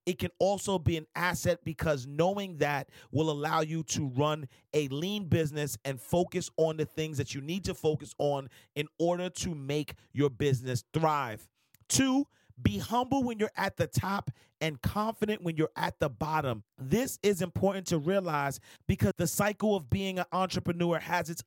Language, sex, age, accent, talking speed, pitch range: English, male, 40-59, American, 180 wpm, 145-190 Hz